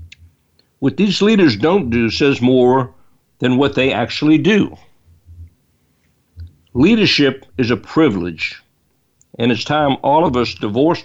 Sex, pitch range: male, 105-145 Hz